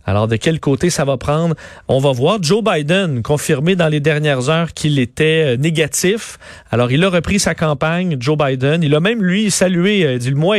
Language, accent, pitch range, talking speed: French, Canadian, 125-170 Hz, 205 wpm